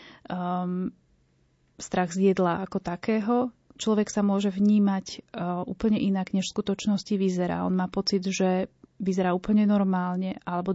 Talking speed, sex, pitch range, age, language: 140 wpm, female, 185-200 Hz, 30-49, Slovak